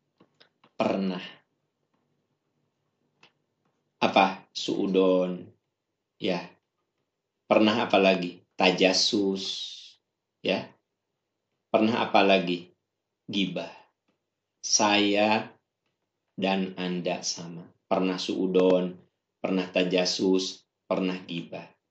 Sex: male